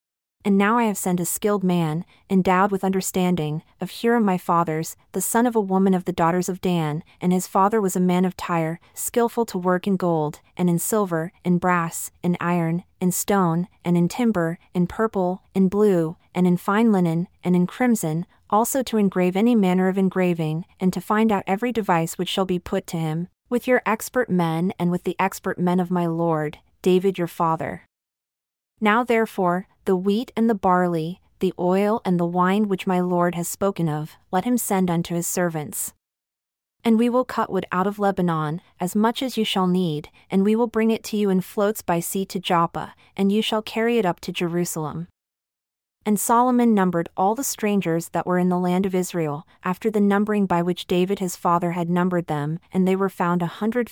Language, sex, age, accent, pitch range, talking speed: English, female, 30-49, American, 175-205 Hz, 205 wpm